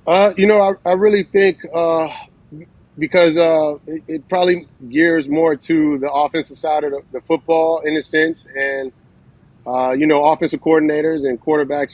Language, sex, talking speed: English, male, 170 wpm